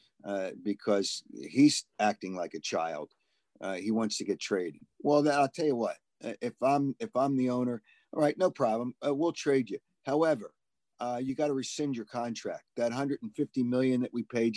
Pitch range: 110-145 Hz